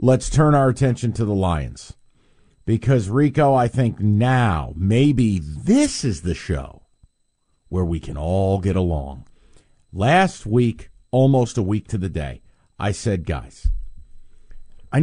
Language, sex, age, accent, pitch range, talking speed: English, male, 50-69, American, 90-125 Hz, 140 wpm